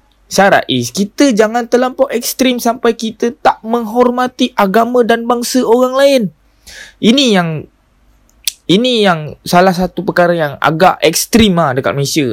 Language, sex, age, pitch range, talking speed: Malay, male, 20-39, 135-210 Hz, 135 wpm